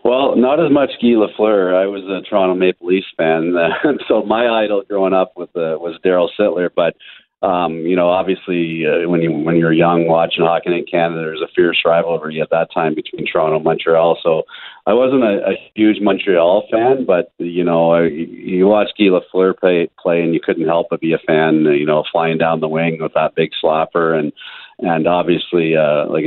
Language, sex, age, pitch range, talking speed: English, male, 40-59, 80-95 Hz, 210 wpm